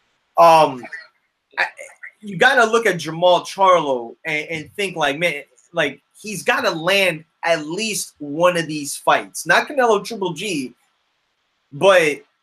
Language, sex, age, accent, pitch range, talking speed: English, male, 20-39, American, 165-220 Hz, 140 wpm